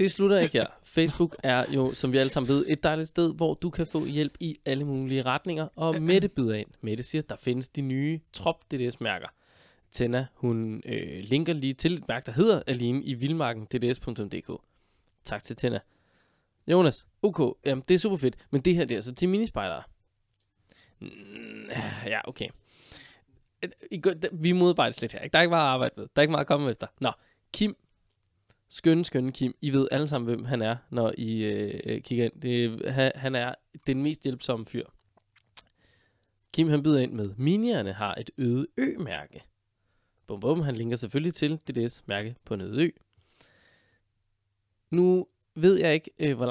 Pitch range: 115-165 Hz